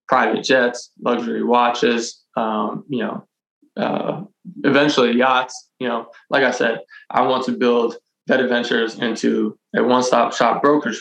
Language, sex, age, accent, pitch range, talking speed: English, male, 20-39, American, 115-130 Hz, 140 wpm